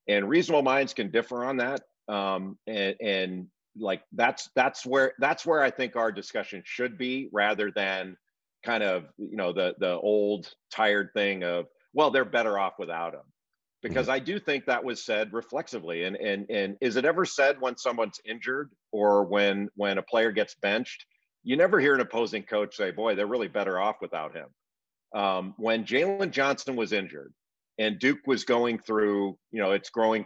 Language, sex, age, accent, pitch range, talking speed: English, male, 50-69, American, 100-130 Hz, 185 wpm